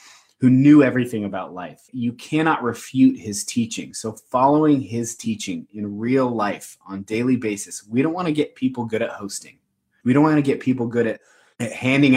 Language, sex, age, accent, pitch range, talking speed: English, male, 20-39, American, 110-140 Hz, 190 wpm